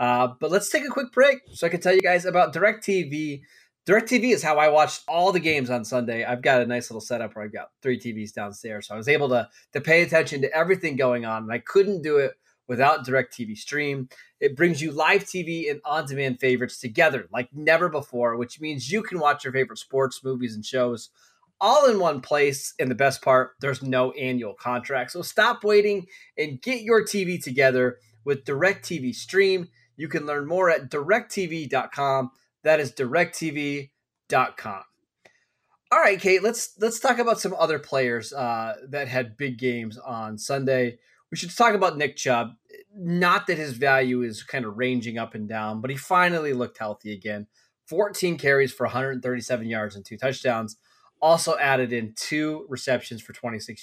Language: English